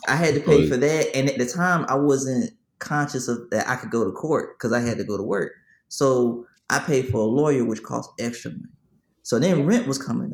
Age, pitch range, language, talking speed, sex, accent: 20-39, 120-150 Hz, English, 245 wpm, male, American